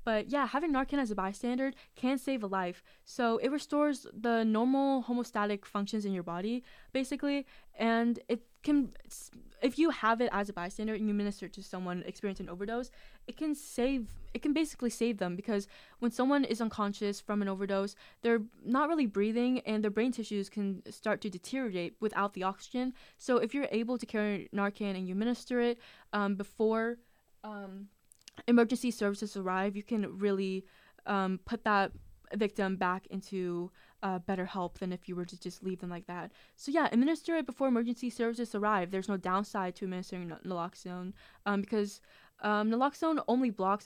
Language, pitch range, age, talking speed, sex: English, 195-240 Hz, 10-29, 180 wpm, female